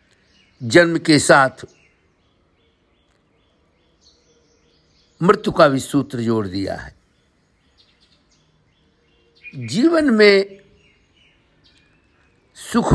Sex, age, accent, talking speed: male, 60-79, native, 60 wpm